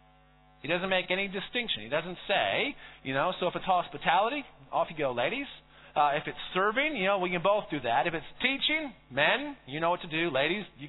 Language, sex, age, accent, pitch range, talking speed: English, male, 40-59, American, 145-210 Hz, 220 wpm